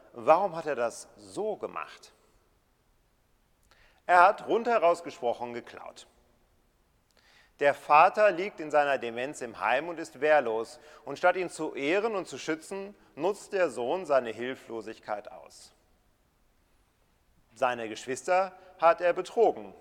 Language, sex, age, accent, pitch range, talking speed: German, male, 40-59, German, 120-180 Hz, 125 wpm